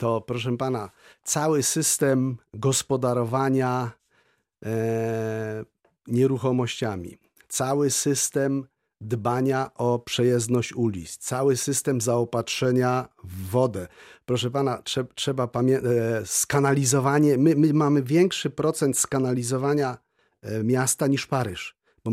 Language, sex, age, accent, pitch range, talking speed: Polish, male, 40-59, native, 120-140 Hz, 100 wpm